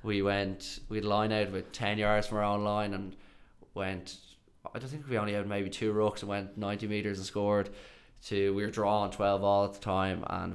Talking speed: 230 wpm